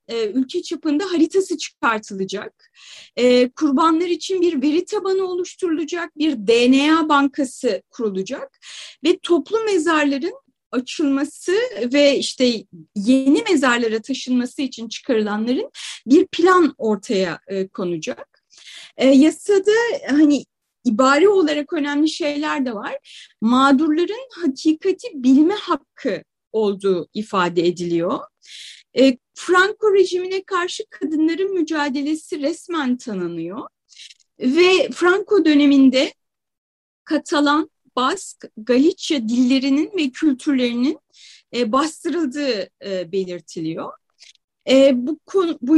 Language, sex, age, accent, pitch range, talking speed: Turkish, female, 30-49, native, 255-345 Hz, 90 wpm